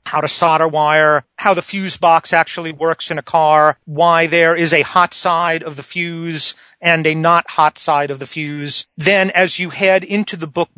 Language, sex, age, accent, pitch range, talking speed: English, male, 40-59, American, 155-175 Hz, 205 wpm